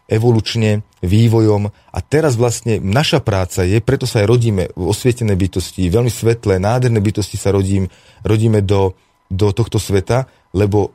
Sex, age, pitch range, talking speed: male, 30-49, 100-120 Hz, 150 wpm